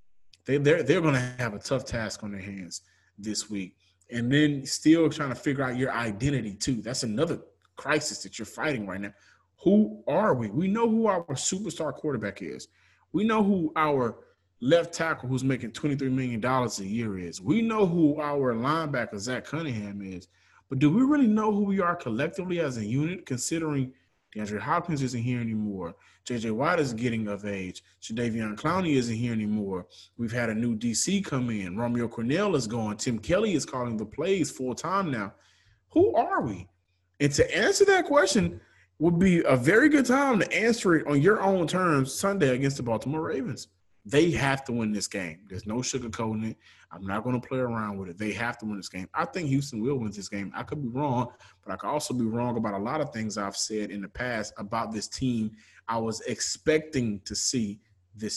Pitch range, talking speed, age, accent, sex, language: 105-145 Hz, 205 wpm, 20-39, American, male, English